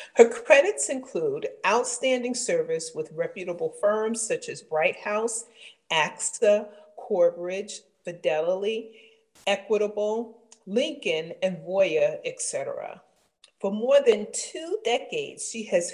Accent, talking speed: American, 100 wpm